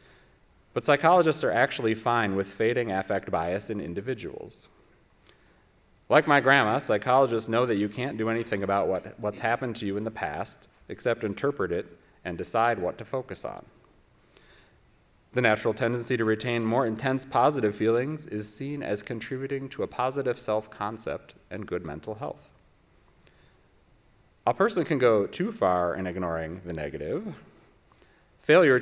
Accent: American